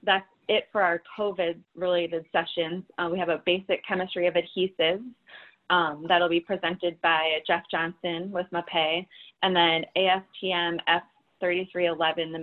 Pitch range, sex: 165-185 Hz, female